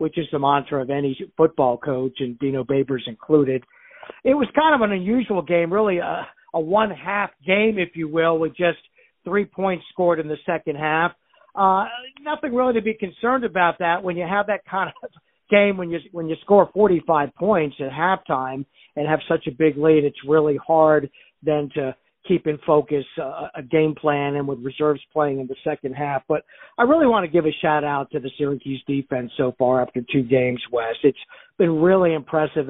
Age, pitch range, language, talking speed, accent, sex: 50-69, 140-175 Hz, English, 200 wpm, American, male